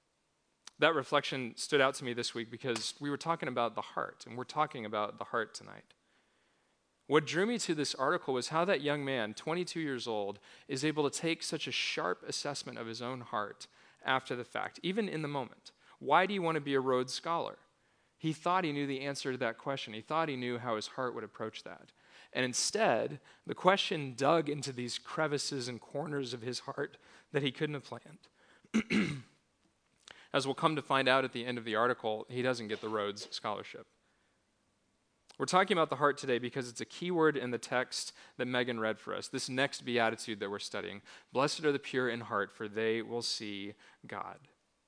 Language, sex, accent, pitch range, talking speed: English, male, American, 120-145 Hz, 205 wpm